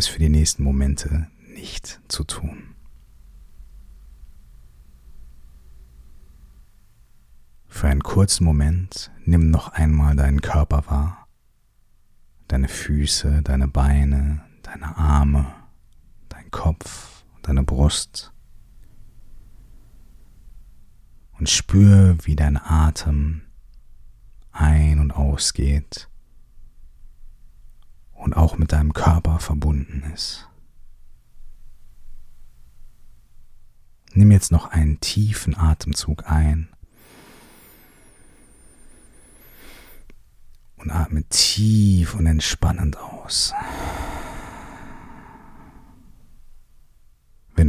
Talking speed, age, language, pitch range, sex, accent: 70 wpm, 40-59, German, 70-85 Hz, male, German